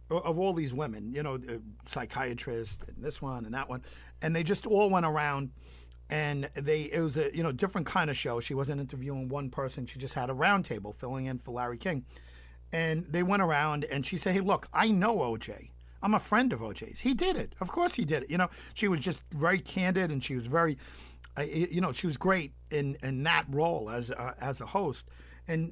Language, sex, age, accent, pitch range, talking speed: English, male, 50-69, American, 110-165 Hz, 235 wpm